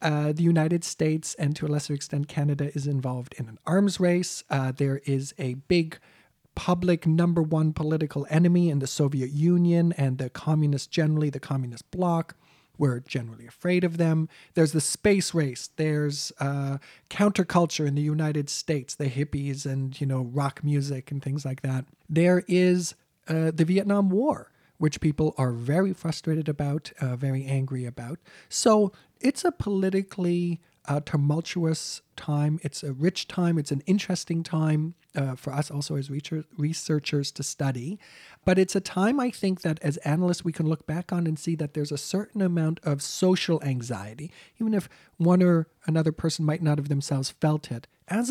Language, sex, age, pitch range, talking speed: English, male, 40-59, 140-175 Hz, 175 wpm